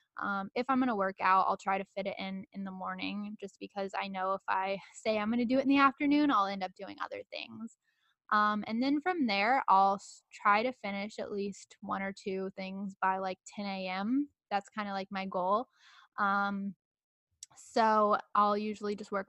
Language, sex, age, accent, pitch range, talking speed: English, female, 10-29, American, 195-220 Hz, 210 wpm